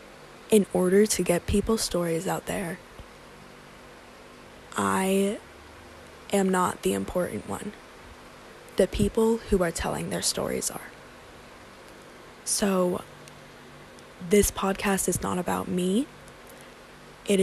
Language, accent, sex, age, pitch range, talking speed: English, American, female, 20-39, 185-205 Hz, 105 wpm